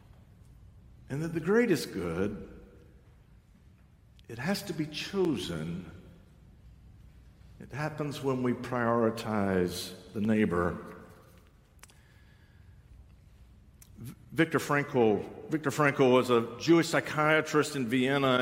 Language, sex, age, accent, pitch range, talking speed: English, male, 60-79, American, 105-140 Hz, 90 wpm